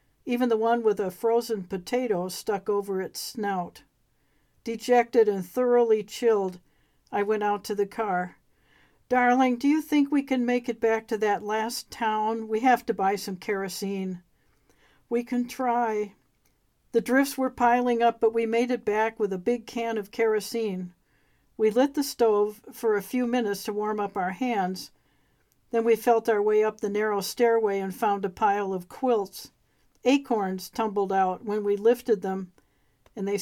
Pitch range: 200-235 Hz